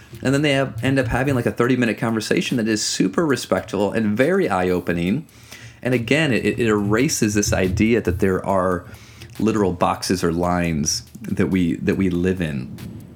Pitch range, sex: 90-115 Hz, male